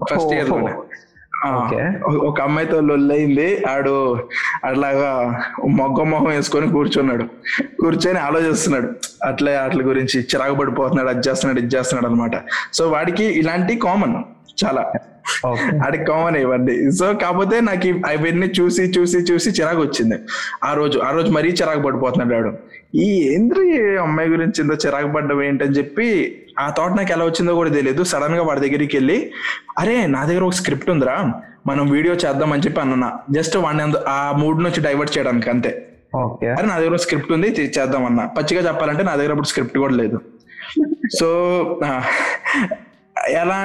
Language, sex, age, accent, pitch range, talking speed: Telugu, male, 20-39, native, 140-175 Hz, 145 wpm